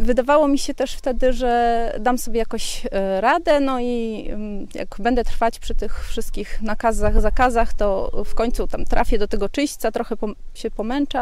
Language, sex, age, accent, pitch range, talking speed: Polish, female, 30-49, native, 225-270 Hz, 165 wpm